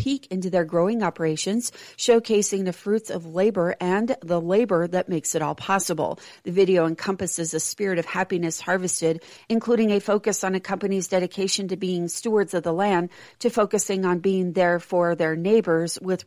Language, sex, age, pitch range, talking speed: English, female, 40-59, 170-195 Hz, 175 wpm